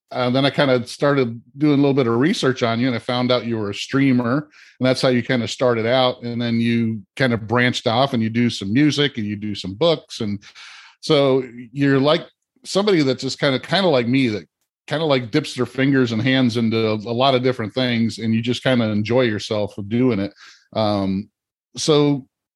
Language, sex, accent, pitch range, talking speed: English, male, American, 110-135 Hz, 230 wpm